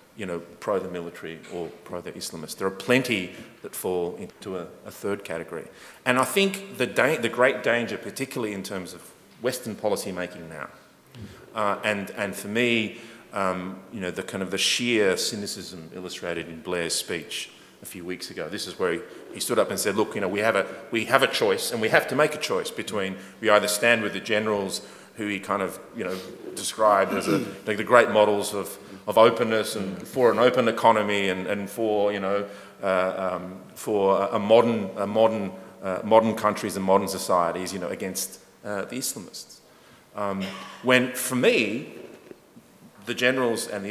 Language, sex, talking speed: English, male, 195 wpm